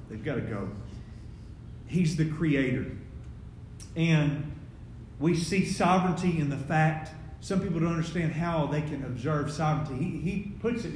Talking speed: 150 wpm